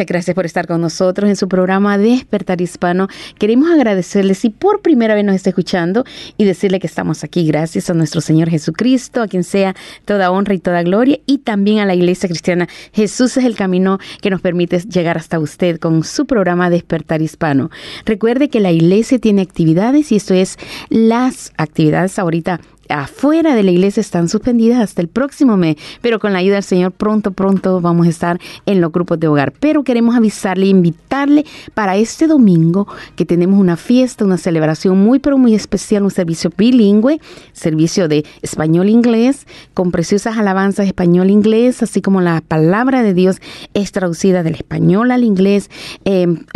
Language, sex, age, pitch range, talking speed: Spanish, female, 30-49, 175-220 Hz, 180 wpm